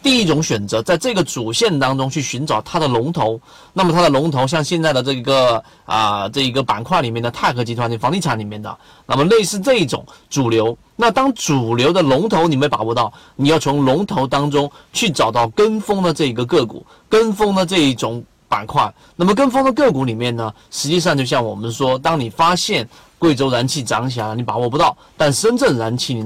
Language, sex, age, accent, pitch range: Chinese, male, 30-49, native, 120-165 Hz